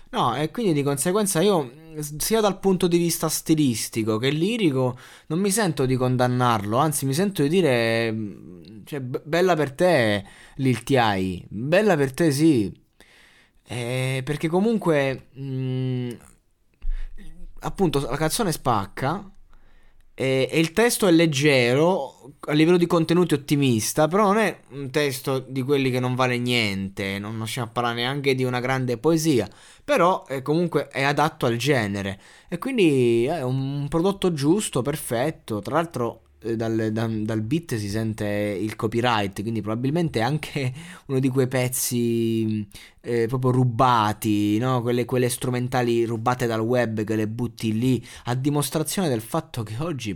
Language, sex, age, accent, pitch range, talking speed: Italian, male, 20-39, native, 110-150 Hz, 150 wpm